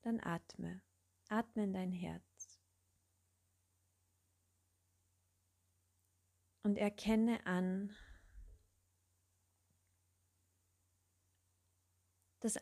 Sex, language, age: female, German, 30-49